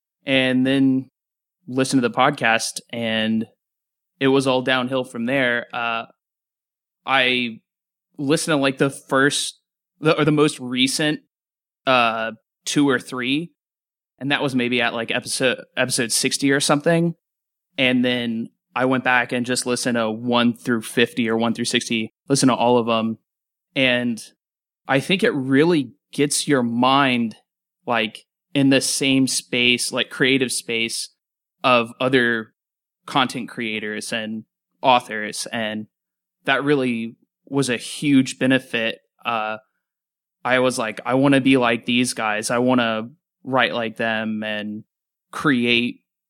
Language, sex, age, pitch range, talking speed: English, male, 20-39, 115-135 Hz, 140 wpm